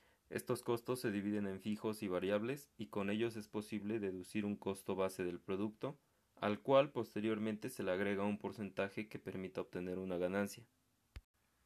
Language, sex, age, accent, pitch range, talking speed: Spanish, male, 30-49, Mexican, 95-110 Hz, 165 wpm